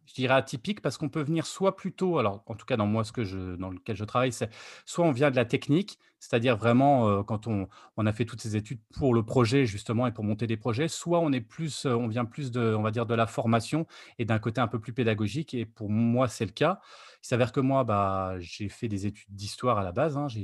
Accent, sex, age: French, male, 30-49